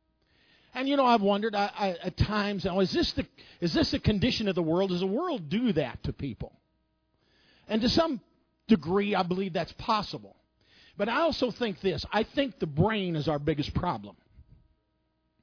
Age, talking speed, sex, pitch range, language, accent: 50-69, 185 wpm, male, 155-235 Hz, English, American